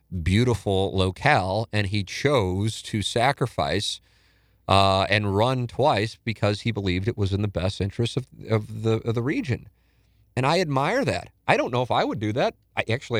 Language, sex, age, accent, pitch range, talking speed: English, male, 40-59, American, 100-120 Hz, 180 wpm